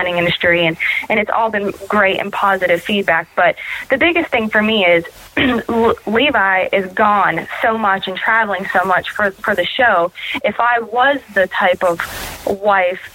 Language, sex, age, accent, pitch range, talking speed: English, female, 20-39, American, 185-220 Hz, 170 wpm